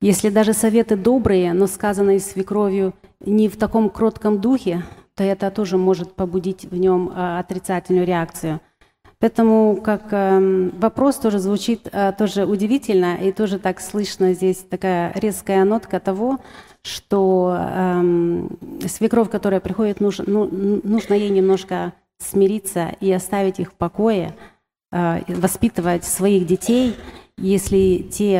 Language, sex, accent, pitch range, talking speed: Russian, female, native, 180-215 Hz, 130 wpm